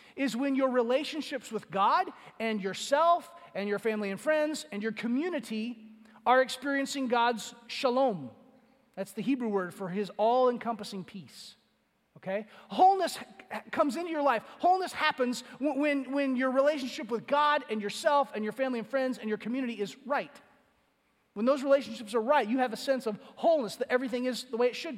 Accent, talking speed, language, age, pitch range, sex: American, 175 wpm, English, 30-49, 225-280 Hz, male